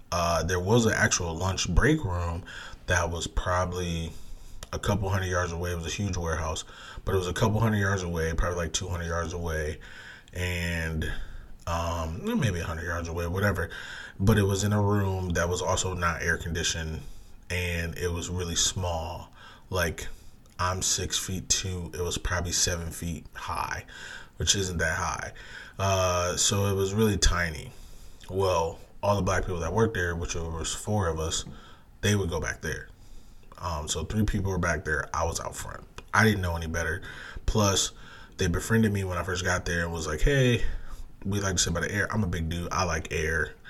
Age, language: 20-39, English